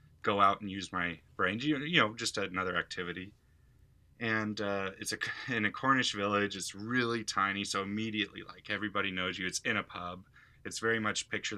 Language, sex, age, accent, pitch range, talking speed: English, male, 20-39, American, 95-115 Hz, 185 wpm